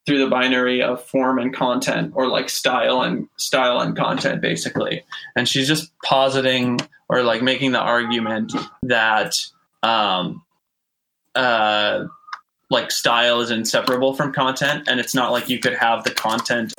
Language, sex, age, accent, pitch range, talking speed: English, male, 20-39, American, 115-130 Hz, 150 wpm